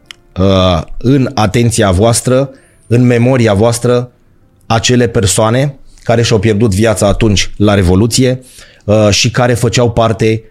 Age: 30-49